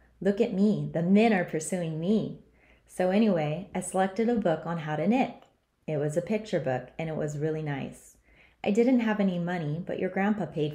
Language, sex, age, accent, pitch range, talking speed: English, female, 20-39, American, 155-200 Hz, 205 wpm